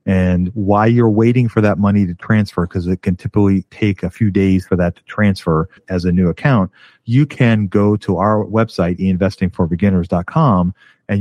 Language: English